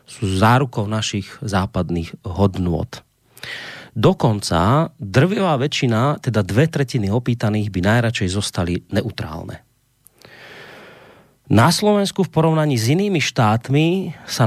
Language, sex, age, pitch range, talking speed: Slovak, male, 30-49, 105-145 Hz, 100 wpm